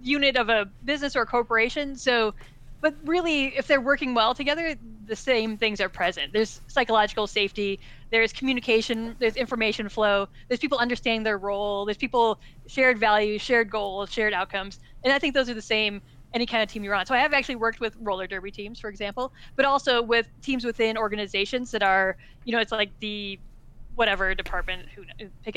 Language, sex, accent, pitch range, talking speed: English, female, American, 200-245 Hz, 190 wpm